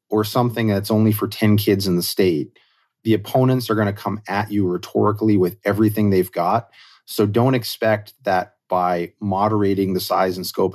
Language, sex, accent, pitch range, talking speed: English, male, American, 95-110 Hz, 185 wpm